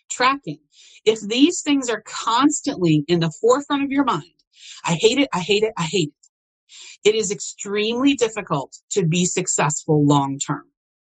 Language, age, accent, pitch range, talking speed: English, 40-59, American, 170-250 Hz, 155 wpm